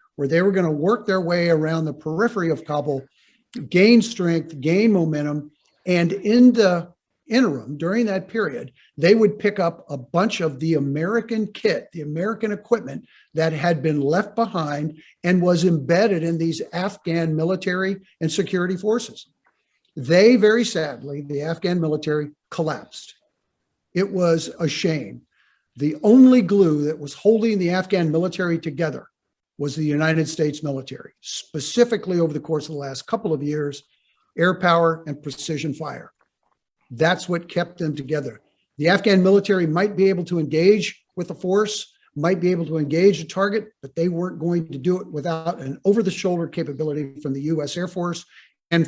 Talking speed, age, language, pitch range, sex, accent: 165 wpm, 50-69, English, 155-190 Hz, male, American